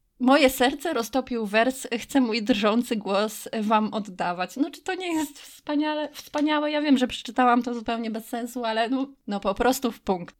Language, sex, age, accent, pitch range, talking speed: Polish, female, 20-39, native, 205-260 Hz, 185 wpm